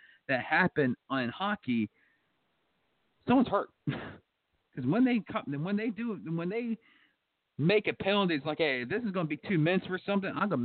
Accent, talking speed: American, 180 wpm